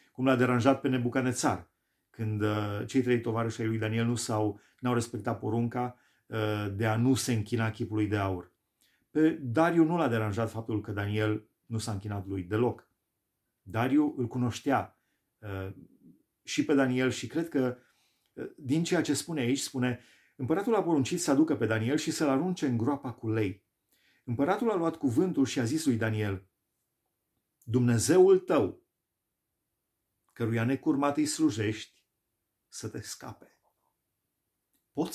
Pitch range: 110-135 Hz